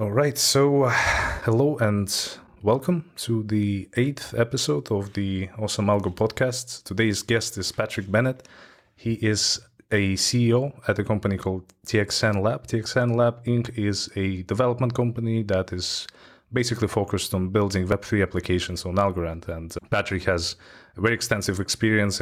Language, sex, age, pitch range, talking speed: English, male, 20-39, 95-115 Hz, 150 wpm